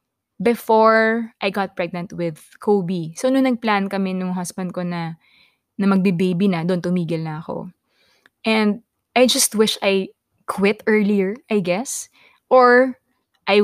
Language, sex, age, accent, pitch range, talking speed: Filipino, female, 20-39, native, 180-225 Hz, 145 wpm